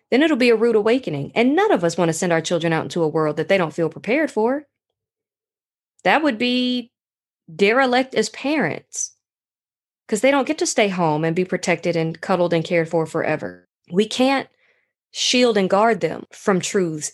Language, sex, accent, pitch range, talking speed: English, female, American, 170-240 Hz, 195 wpm